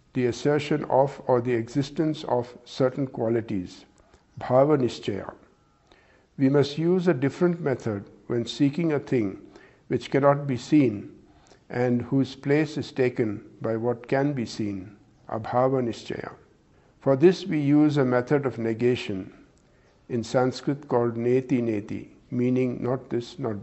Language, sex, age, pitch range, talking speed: English, male, 60-79, 120-145 Hz, 135 wpm